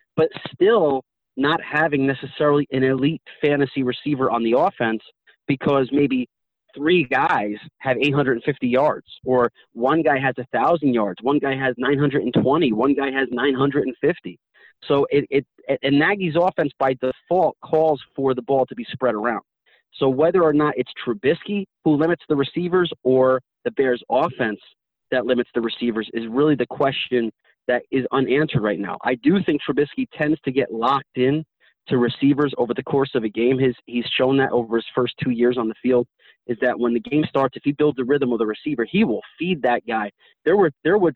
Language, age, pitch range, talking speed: English, 30-49, 125-145 Hz, 185 wpm